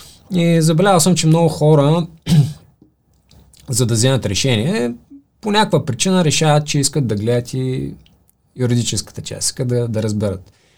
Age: 20-39